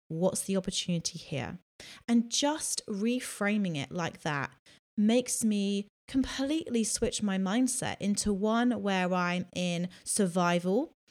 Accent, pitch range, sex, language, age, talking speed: British, 175-215 Hz, female, English, 30-49, 120 wpm